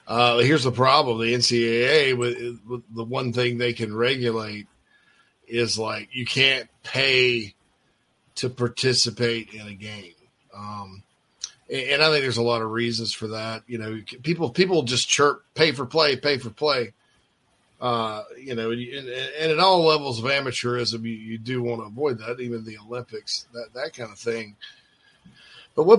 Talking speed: 175 wpm